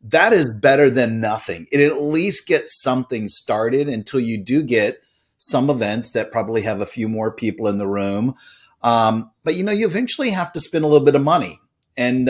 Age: 40-59